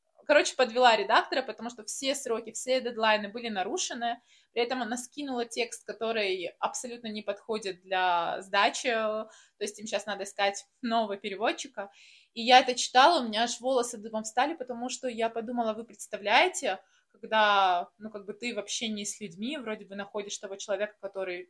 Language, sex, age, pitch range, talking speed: Russian, female, 20-39, 200-255 Hz, 175 wpm